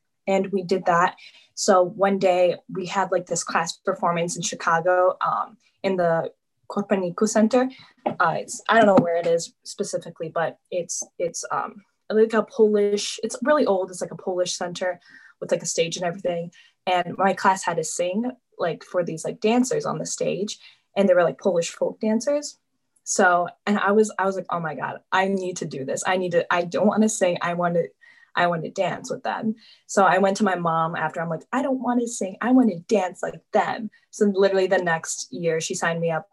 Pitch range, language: 175-215 Hz, English